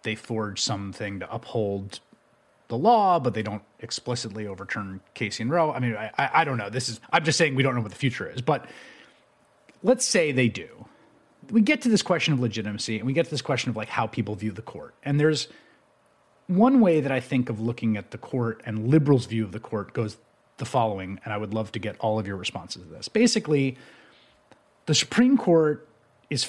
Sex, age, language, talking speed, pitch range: male, 30-49, English, 220 wpm, 115-150 Hz